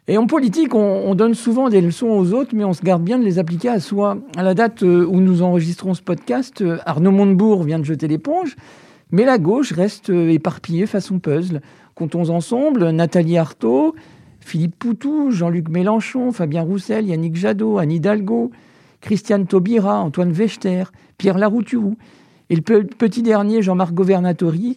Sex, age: male, 50-69